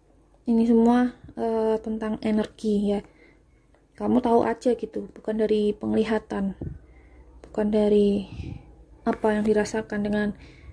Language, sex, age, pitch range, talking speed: Indonesian, female, 20-39, 205-230 Hz, 105 wpm